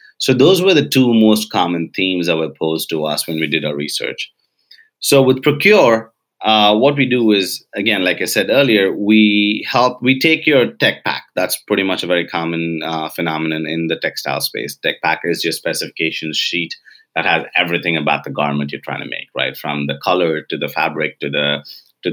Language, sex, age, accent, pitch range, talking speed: English, male, 30-49, Indian, 80-105 Hz, 205 wpm